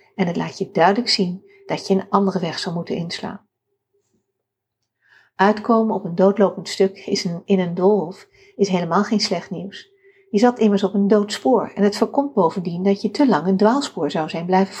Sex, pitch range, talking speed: female, 190-235 Hz, 185 wpm